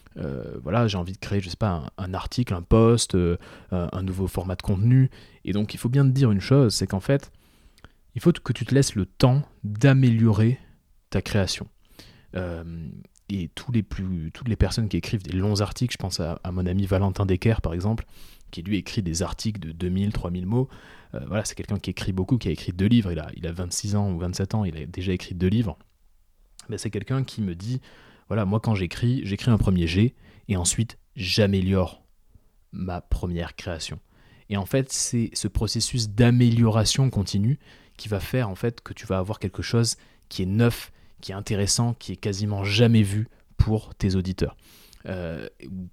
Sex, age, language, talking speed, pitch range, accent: male, 20-39, French, 205 wpm, 90-115 Hz, French